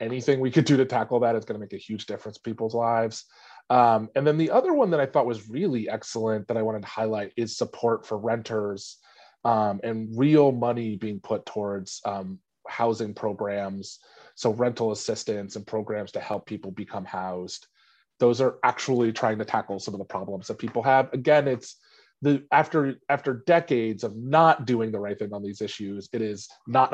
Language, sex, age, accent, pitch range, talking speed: English, male, 30-49, American, 110-135 Hz, 195 wpm